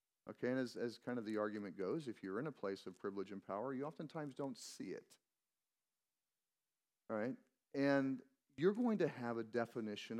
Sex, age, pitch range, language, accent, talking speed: male, 40-59, 110-150 Hz, English, American, 190 wpm